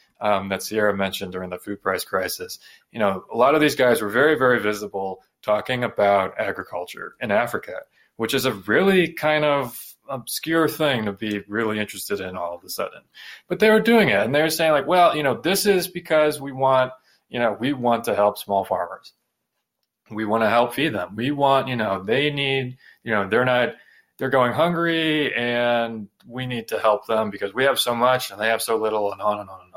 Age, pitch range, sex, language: 20-39, 105-150 Hz, male, English